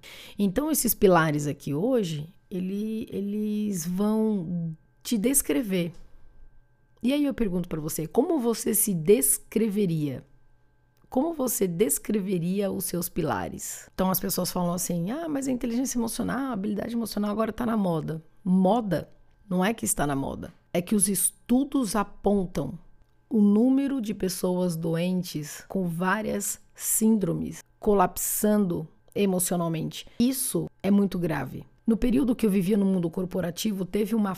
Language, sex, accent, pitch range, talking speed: Portuguese, female, Brazilian, 175-215 Hz, 135 wpm